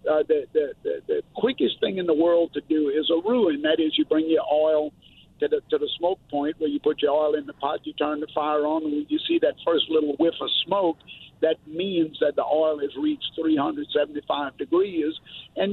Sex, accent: male, American